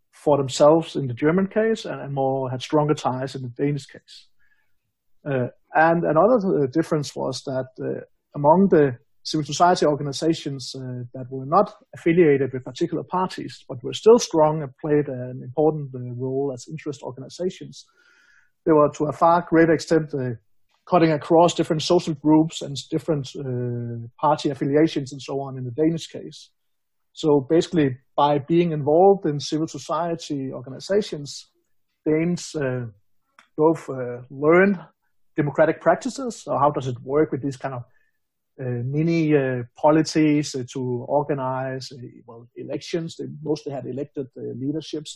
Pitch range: 135-165 Hz